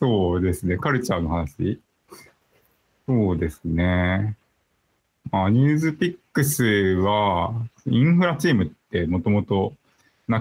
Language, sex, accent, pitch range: Japanese, male, native, 90-135 Hz